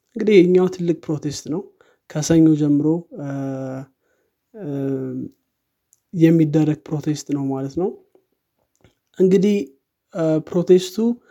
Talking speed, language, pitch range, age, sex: 70 wpm, Amharic, 145-170 Hz, 20-39, male